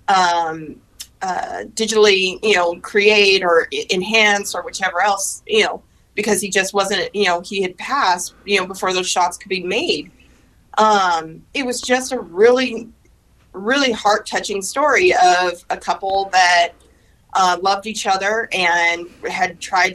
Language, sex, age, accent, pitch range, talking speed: English, female, 30-49, American, 185-230 Hz, 155 wpm